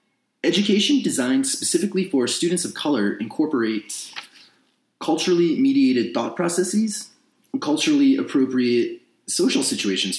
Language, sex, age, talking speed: English, male, 30-49, 95 wpm